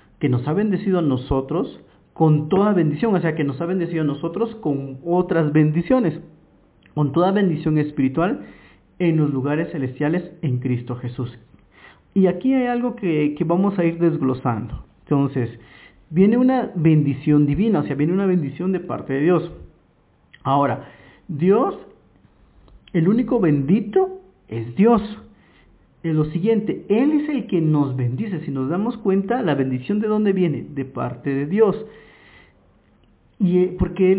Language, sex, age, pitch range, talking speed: Spanish, male, 50-69, 140-195 Hz, 150 wpm